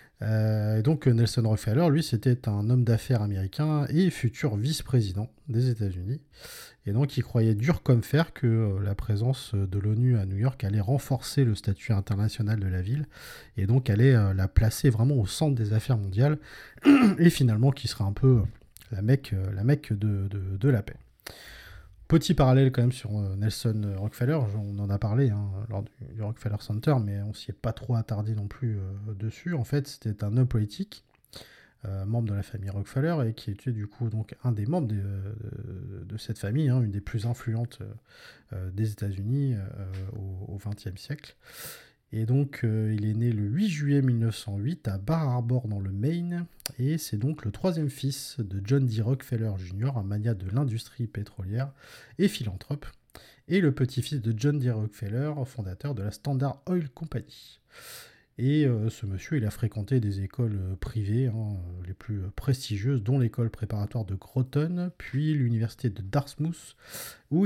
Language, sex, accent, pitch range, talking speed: French, male, French, 105-135 Hz, 180 wpm